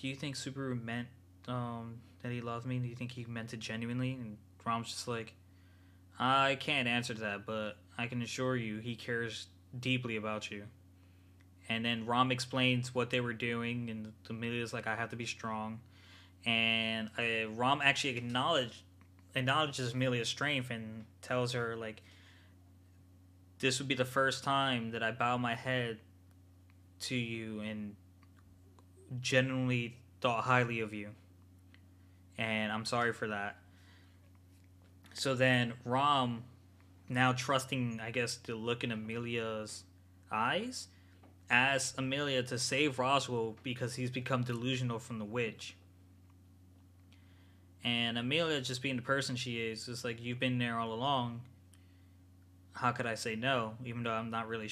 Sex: male